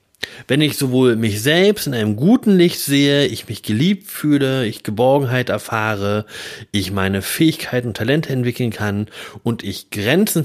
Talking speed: 155 wpm